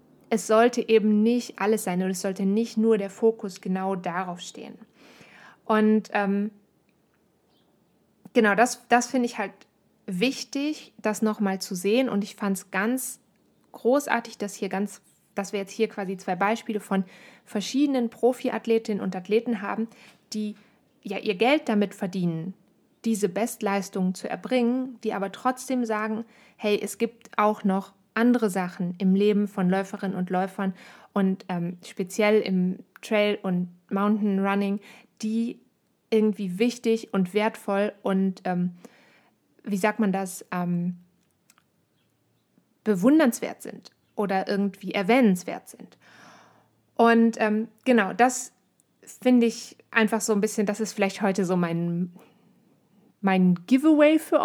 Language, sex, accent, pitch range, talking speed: German, female, German, 195-230 Hz, 135 wpm